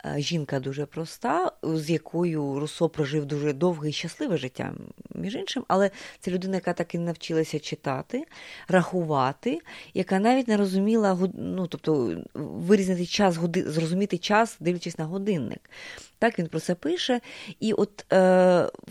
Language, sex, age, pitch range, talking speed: Ukrainian, female, 20-39, 160-210 Hz, 140 wpm